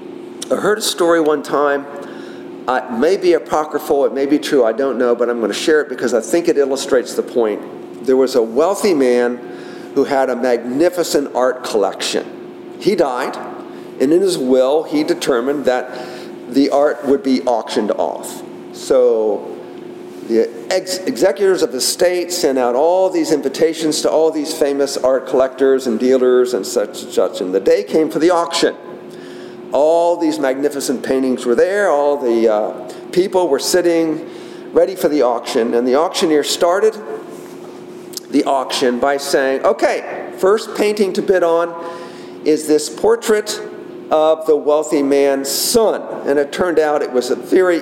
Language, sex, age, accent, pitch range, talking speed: English, male, 50-69, American, 135-185 Hz, 165 wpm